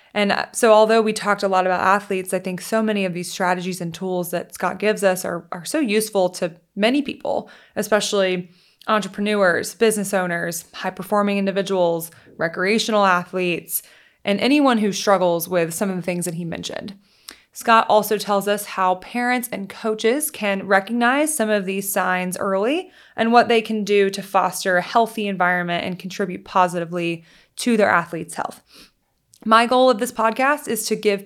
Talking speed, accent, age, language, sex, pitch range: 170 wpm, American, 20-39, English, female, 185-225 Hz